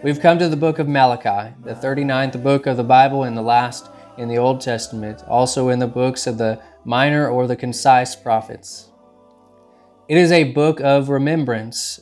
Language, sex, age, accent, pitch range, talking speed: English, male, 20-39, American, 120-140 Hz, 185 wpm